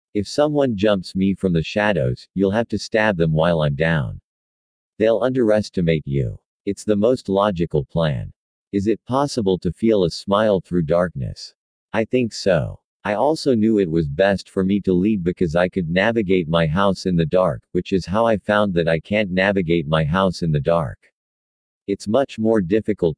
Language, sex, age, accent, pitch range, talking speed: English, male, 50-69, American, 85-105 Hz, 185 wpm